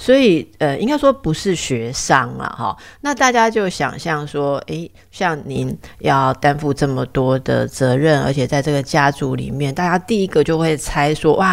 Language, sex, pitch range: Chinese, female, 145-215 Hz